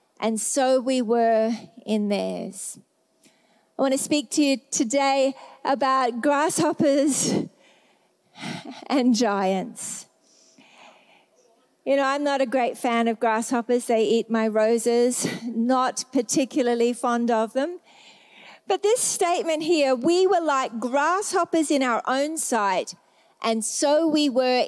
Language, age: English, 40-59